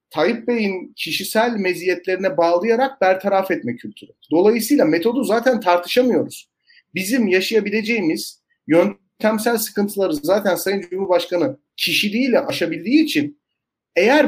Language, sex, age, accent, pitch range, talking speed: Turkish, male, 40-59, native, 160-235 Hz, 95 wpm